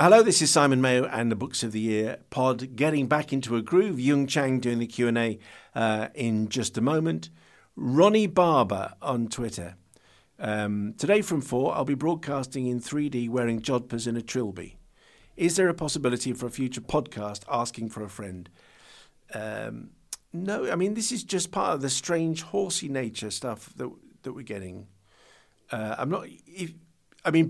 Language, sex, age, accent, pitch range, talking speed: English, male, 50-69, British, 110-145 Hz, 175 wpm